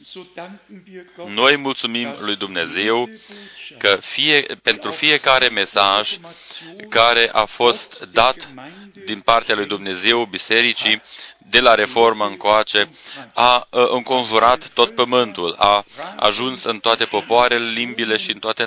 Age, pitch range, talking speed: 40-59, 105-125 Hz, 115 wpm